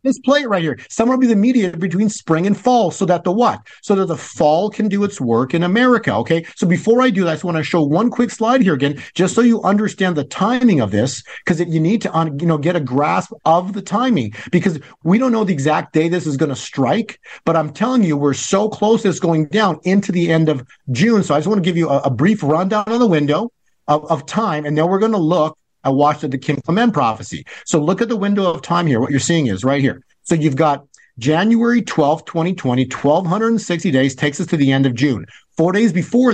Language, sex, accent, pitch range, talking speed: English, male, American, 145-205 Hz, 250 wpm